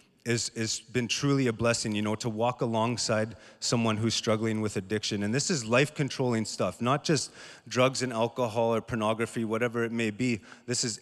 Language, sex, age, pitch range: English, male, 30-49, 110-130 Hz